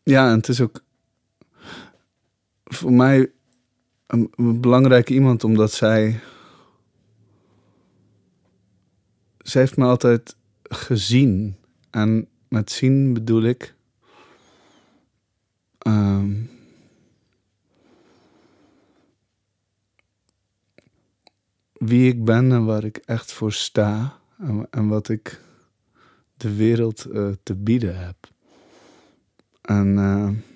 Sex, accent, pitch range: male, Dutch, 100-125 Hz